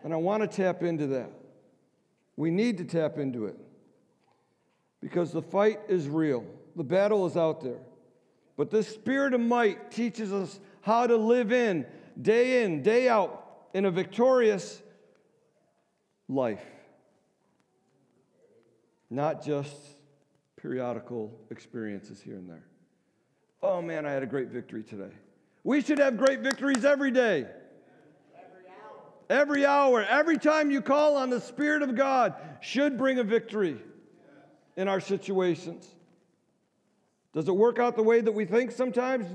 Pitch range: 160-240 Hz